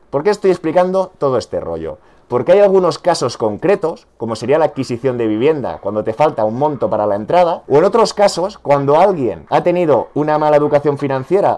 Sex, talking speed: male, 195 wpm